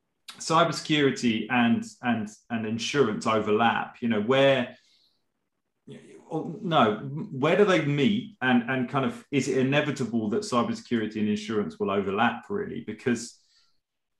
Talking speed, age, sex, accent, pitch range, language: 125 wpm, 30-49, male, British, 115-155 Hz, English